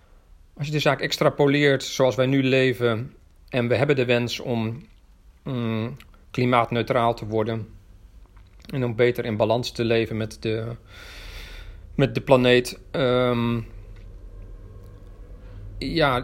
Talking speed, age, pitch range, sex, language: 120 wpm, 40-59, 110-135 Hz, male, Dutch